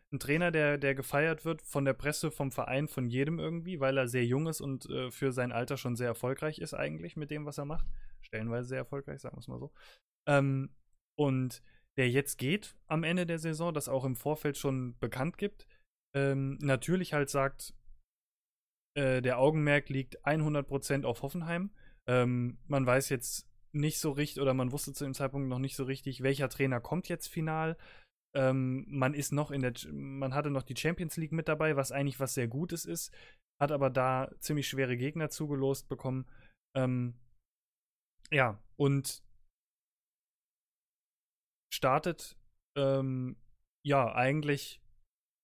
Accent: German